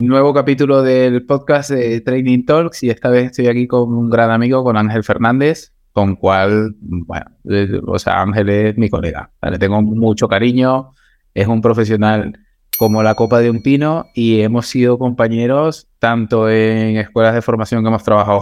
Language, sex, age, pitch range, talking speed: Spanish, male, 20-39, 110-140 Hz, 180 wpm